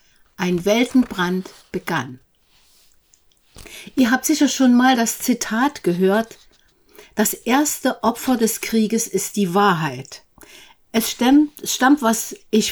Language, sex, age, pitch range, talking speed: German, female, 60-79, 200-255 Hz, 115 wpm